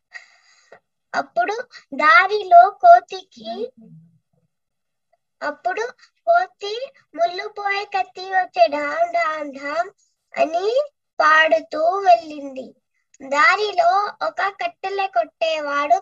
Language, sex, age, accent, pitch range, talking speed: Telugu, male, 20-39, native, 290-370 Hz, 65 wpm